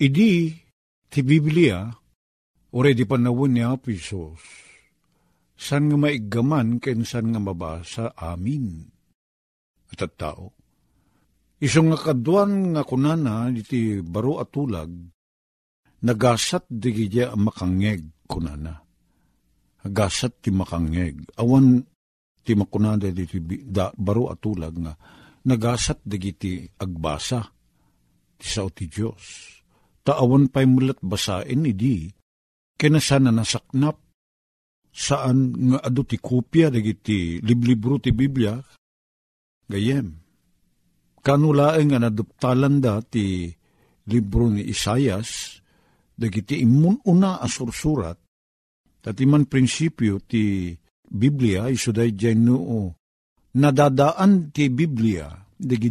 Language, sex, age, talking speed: Filipino, male, 50-69, 95 wpm